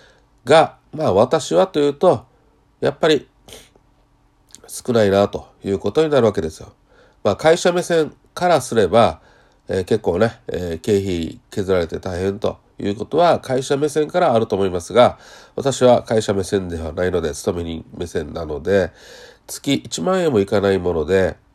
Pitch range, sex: 95-130 Hz, male